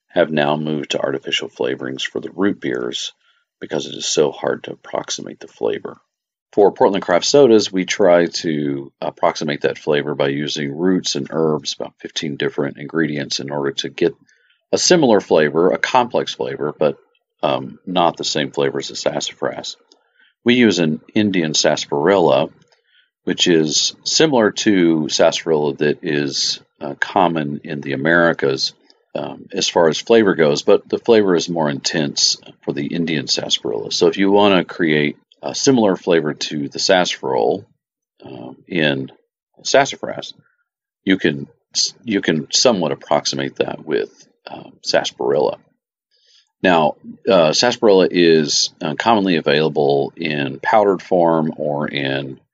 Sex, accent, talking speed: male, American, 145 wpm